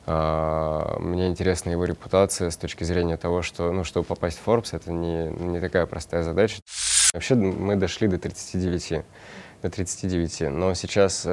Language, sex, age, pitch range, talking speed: Russian, male, 20-39, 80-95 Hz, 155 wpm